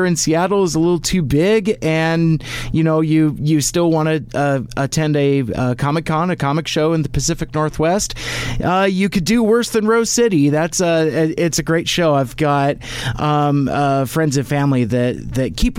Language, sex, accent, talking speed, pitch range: English, male, American, 200 wpm, 135-175 Hz